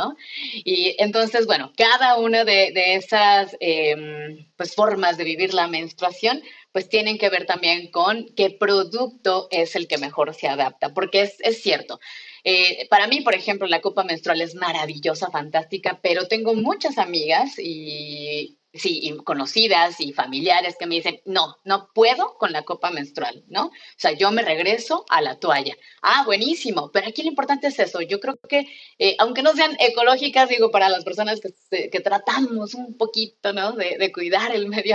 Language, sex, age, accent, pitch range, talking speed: Spanish, female, 30-49, Mexican, 175-230 Hz, 175 wpm